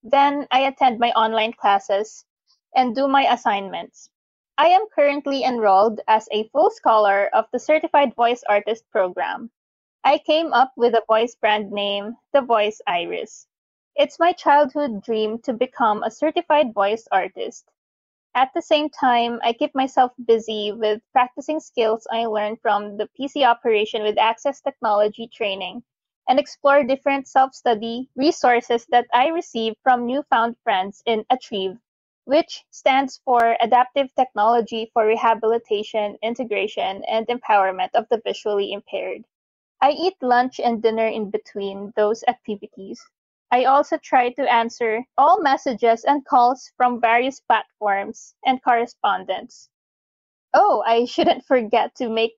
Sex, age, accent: female, 20-39, Filipino